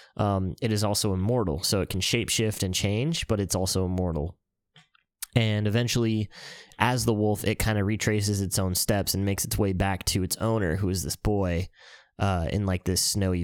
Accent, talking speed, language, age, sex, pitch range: American, 200 wpm, English, 10-29, male, 90-105 Hz